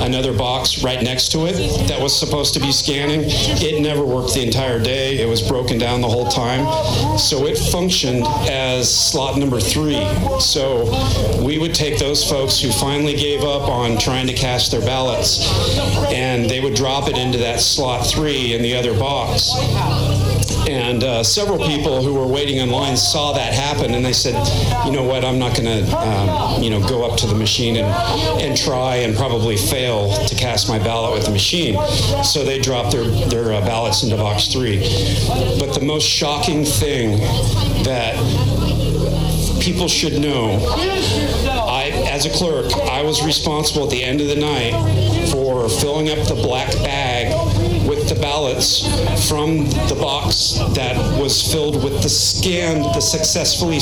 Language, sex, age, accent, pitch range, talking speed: English, male, 40-59, American, 110-140 Hz, 170 wpm